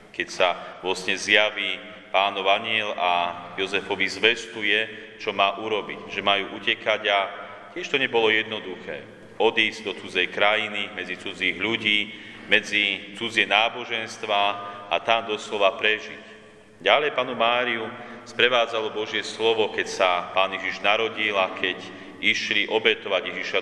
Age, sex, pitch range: 40-59, male, 100-115 Hz